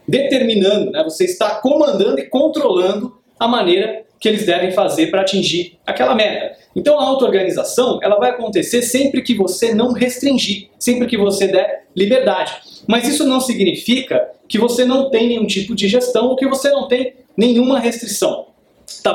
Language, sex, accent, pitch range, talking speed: Portuguese, male, Brazilian, 190-250 Hz, 165 wpm